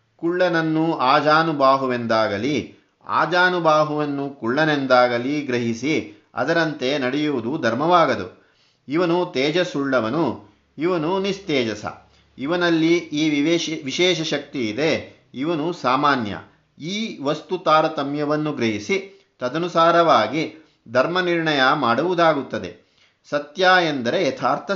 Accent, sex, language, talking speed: native, male, Kannada, 75 wpm